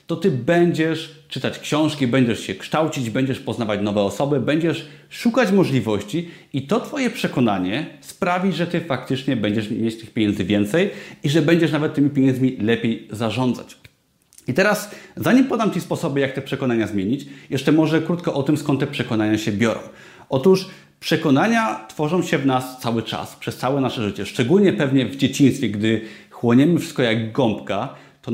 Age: 30-49